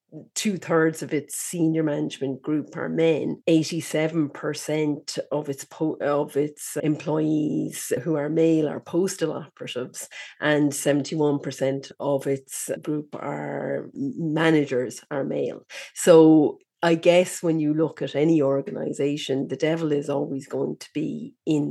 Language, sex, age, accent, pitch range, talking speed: English, female, 40-59, Irish, 145-165 Hz, 145 wpm